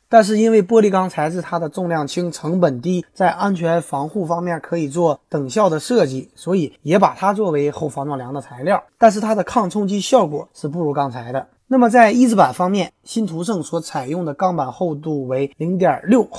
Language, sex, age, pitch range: Chinese, male, 20-39, 150-205 Hz